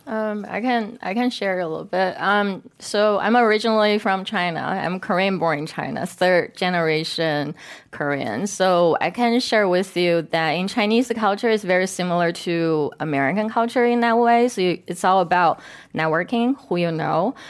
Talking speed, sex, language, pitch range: 170 wpm, female, English, 165-200 Hz